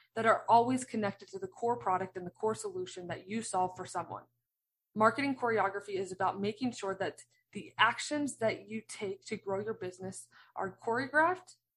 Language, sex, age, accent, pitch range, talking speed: English, female, 20-39, American, 180-220 Hz, 180 wpm